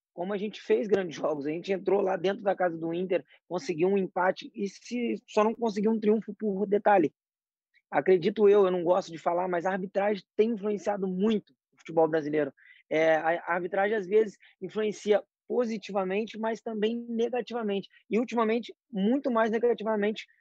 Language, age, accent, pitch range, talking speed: Portuguese, 20-39, Brazilian, 165-215 Hz, 175 wpm